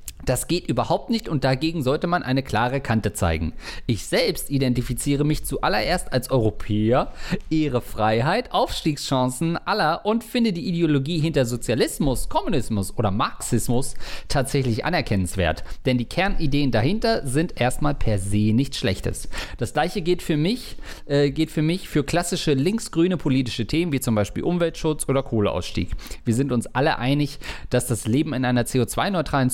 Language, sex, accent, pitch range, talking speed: German, male, German, 125-170 Hz, 150 wpm